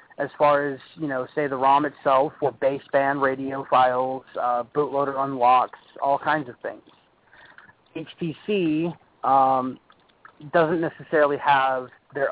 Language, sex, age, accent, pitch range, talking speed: English, male, 30-49, American, 130-150 Hz, 125 wpm